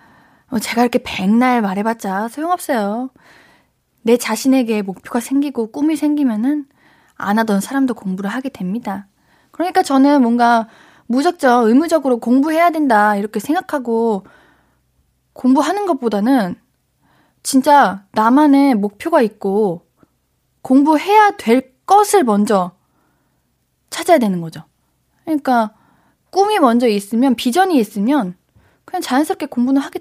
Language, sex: Korean, female